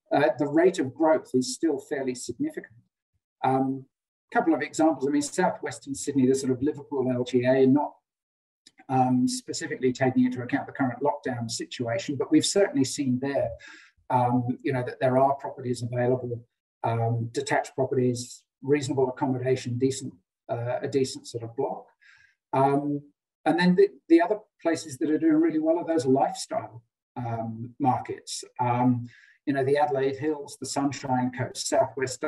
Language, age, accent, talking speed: English, 50-69, British, 155 wpm